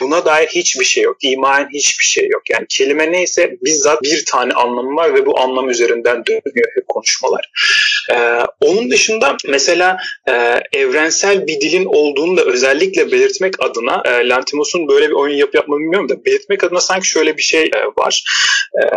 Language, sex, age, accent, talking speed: Turkish, male, 30-49, native, 175 wpm